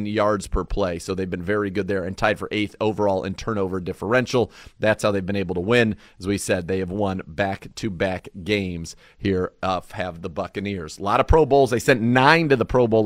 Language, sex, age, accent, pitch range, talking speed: English, male, 40-59, American, 100-145 Hz, 225 wpm